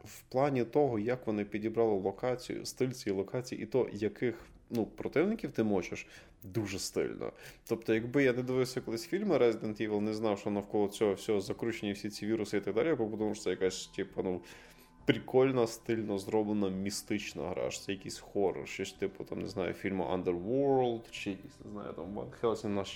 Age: 20-39